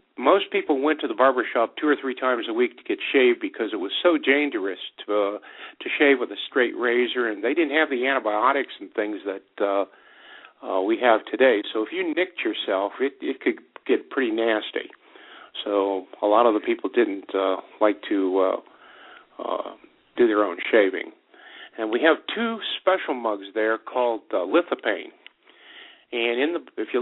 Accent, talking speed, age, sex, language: American, 185 wpm, 50-69, male, English